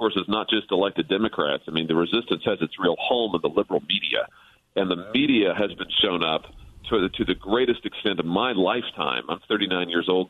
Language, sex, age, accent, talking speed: English, male, 40-59, American, 215 wpm